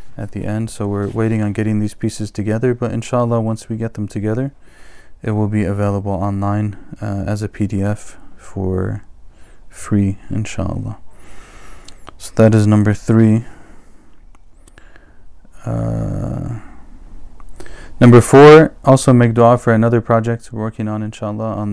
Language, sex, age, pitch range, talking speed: English, male, 20-39, 100-115 Hz, 135 wpm